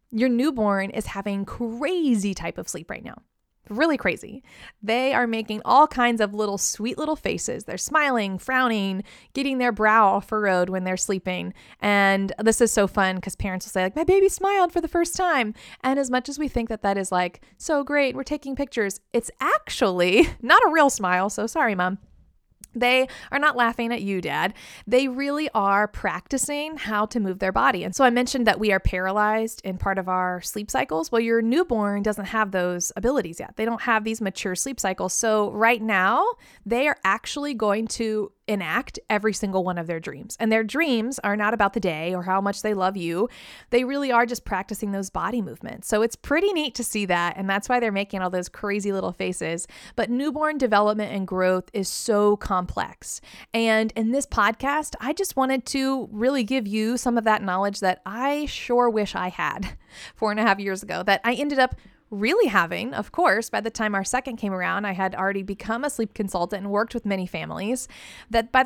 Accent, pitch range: American, 195-255 Hz